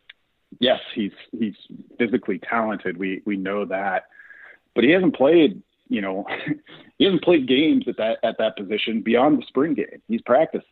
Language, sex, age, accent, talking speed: English, male, 40-59, American, 170 wpm